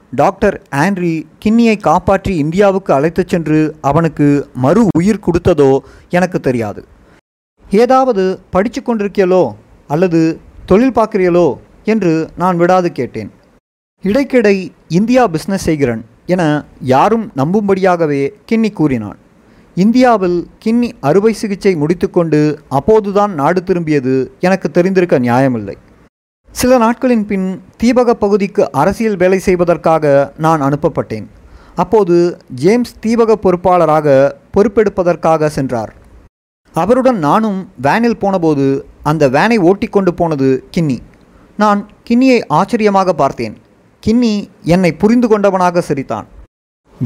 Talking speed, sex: 95 wpm, male